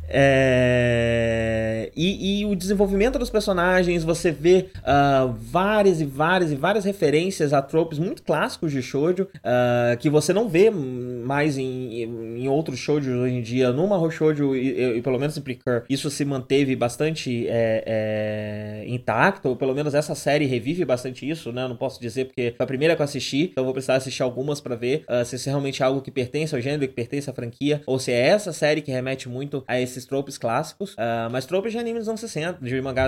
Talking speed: 210 wpm